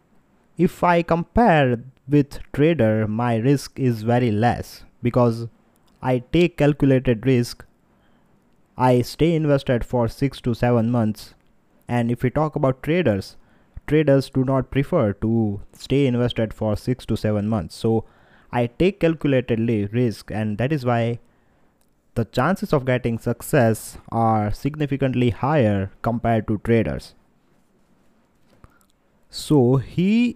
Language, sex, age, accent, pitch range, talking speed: English, male, 20-39, Indian, 115-145 Hz, 125 wpm